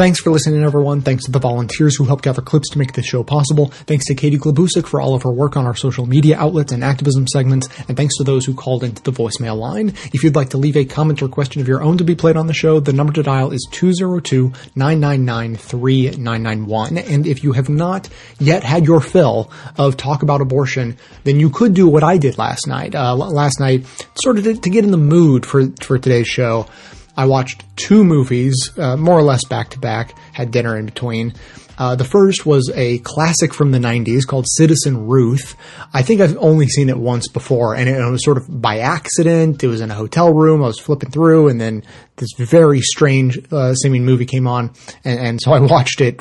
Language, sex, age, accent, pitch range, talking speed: English, male, 30-49, American, 125-150 Hz, 220 wpm